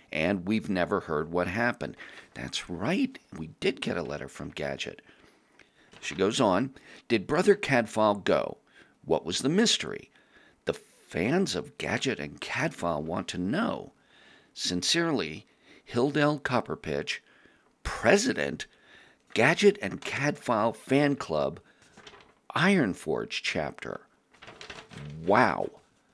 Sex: male